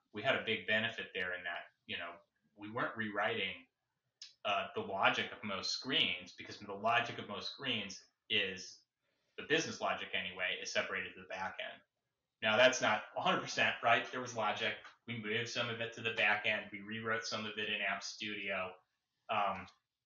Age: 30-49